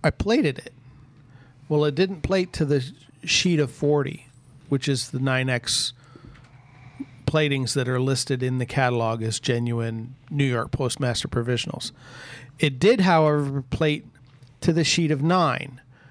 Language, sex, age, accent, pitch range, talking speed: English, male, 40-59, American, 130-150 Hz, 140 wpm